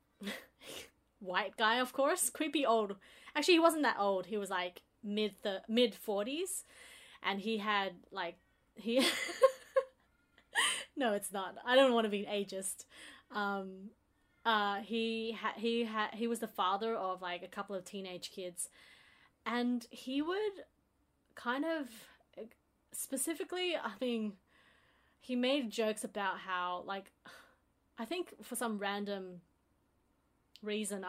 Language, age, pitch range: English, 20-39, 195-240 Hz